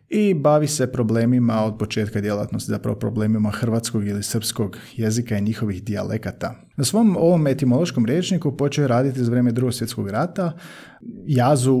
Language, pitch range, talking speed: Croatian, 115-145 Hz, 140 wpm